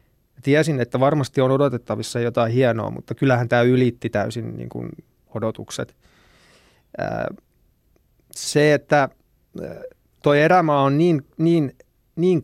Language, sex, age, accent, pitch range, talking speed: Finnish, male, 30-49, native, 120-145 Hz, 110 wpm